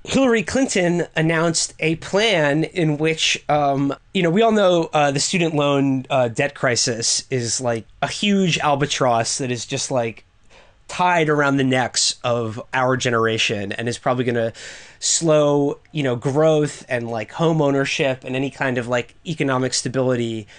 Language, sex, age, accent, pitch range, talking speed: English, male, 20-39, American, 130-170 Hz, 165 wpm